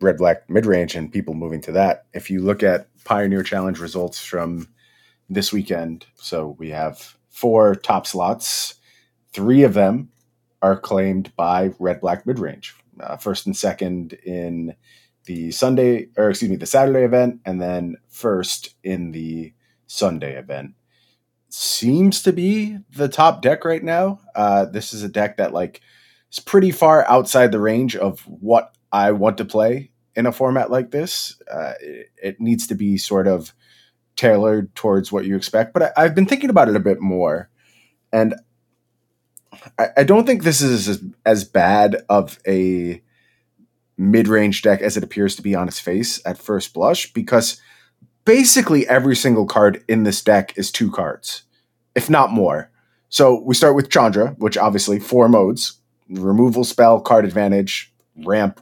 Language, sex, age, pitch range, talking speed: English, male, 30-49, 95-130 Hz, 165 wpm